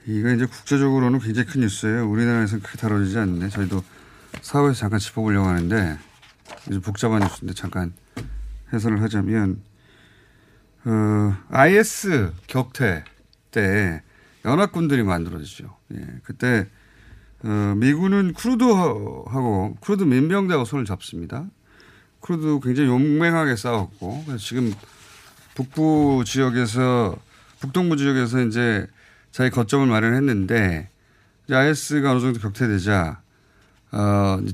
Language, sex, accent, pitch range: Korean, male, native, 105-140 Hz